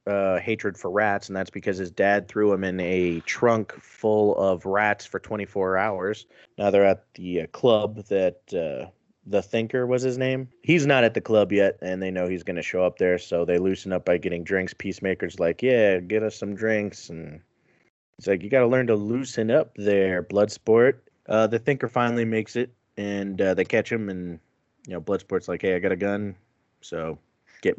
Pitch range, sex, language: 95-110 Hz, male, English